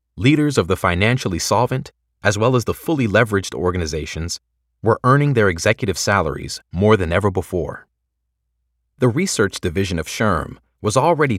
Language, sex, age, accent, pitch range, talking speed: English, male, 30-49, American, 85-120 Hz, 150 wpm